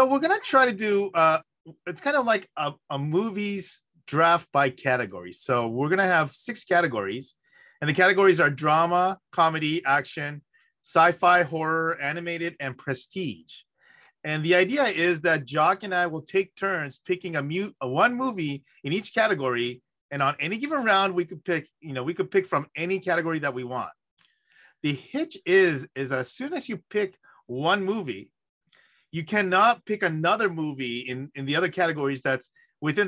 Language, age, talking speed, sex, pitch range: English, 30-49, 180 wpm, male, 145-195 Hz